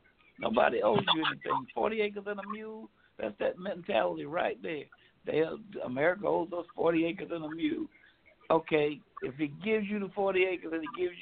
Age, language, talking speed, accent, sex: 60-79, English, 180 wpm, American, male